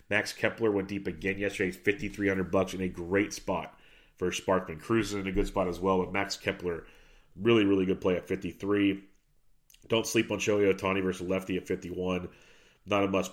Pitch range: 90-100 Hz